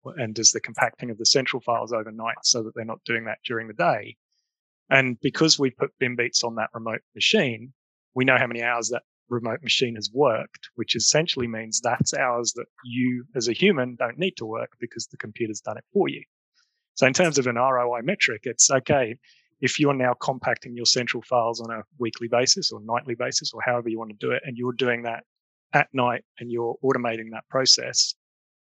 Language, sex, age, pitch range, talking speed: English, male, 30-49, 115-135 Hz, 210 wpm